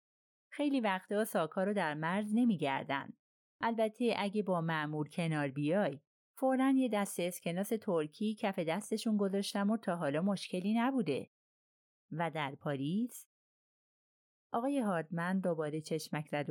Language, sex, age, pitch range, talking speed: Persian, female, 30-49, 160-220 Hz, 125 wpm